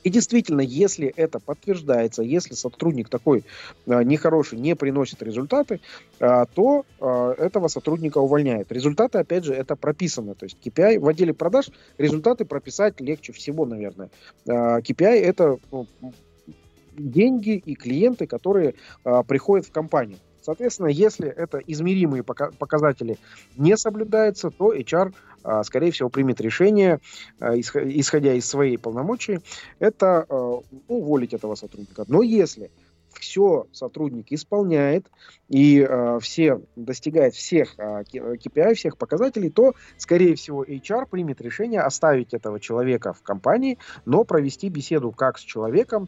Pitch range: 125-180 Hz